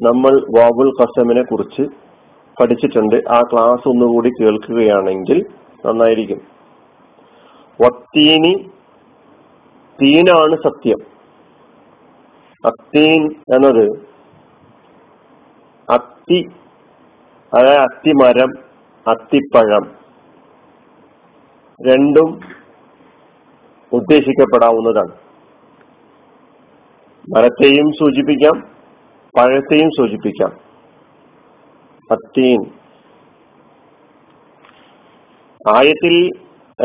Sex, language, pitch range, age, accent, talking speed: male, Malayalam, 125-155 Hz, 50-69, native, 45 wpm